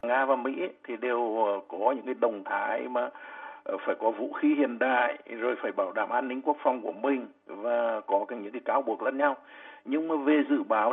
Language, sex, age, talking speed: Vietnamese, male, 60-79, 225 wpm